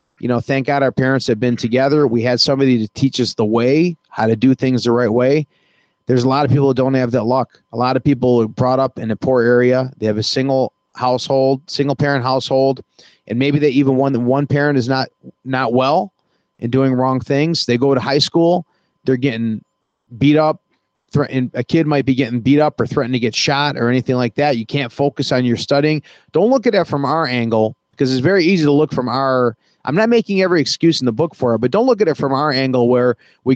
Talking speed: 245 wpm